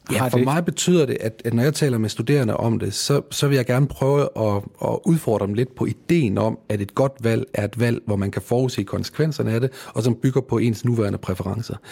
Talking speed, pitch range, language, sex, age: 245 wpm, 110-135 Hz, Danish, male, 30-49